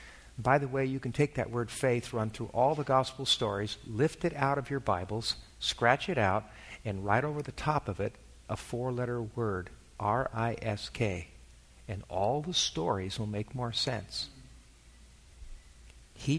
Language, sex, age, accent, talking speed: English, male, 50-69, American, 160 wpm